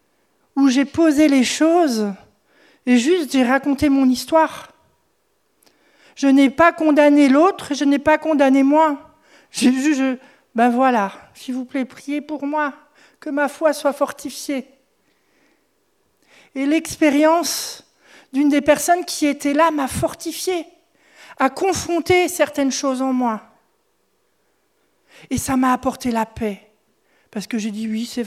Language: French